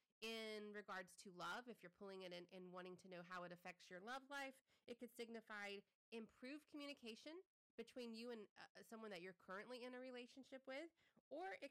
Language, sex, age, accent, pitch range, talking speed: English, female, 30-49, American, 190-245 Hz, 200 wpm